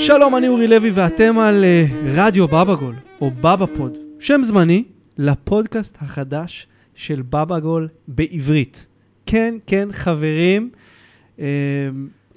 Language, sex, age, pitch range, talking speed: Hebrew, male, 30-49, 140-190 Hz, 120 wpm